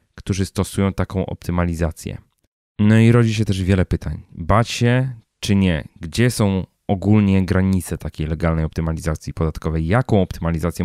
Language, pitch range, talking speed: Polish, 85-105 Hz, 140 wpm